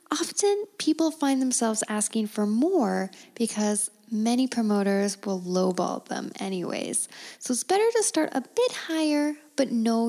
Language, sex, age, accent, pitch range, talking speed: English, female, 10-29, American, 210-265 Hz, 145 wpm